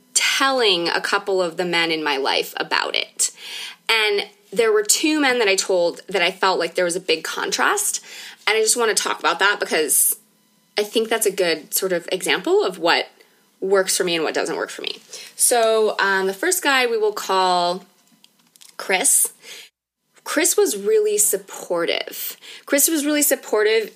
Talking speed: 185 wpm